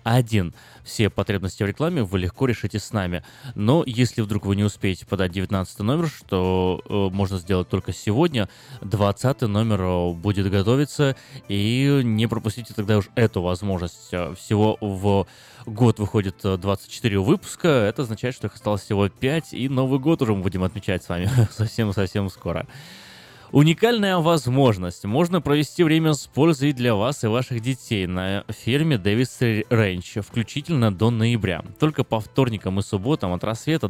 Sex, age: male, 20-39